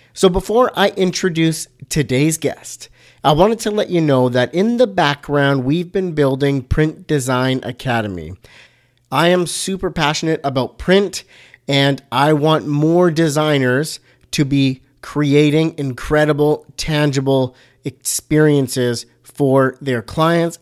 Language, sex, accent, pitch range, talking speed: English, male, American, 130-165 Hz, 120 wpm